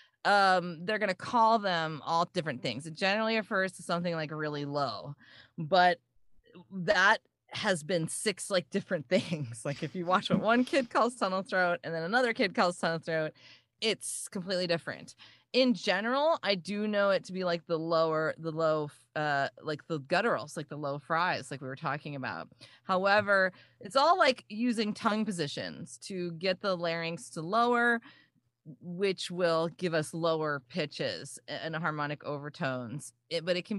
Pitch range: 160-205 Hz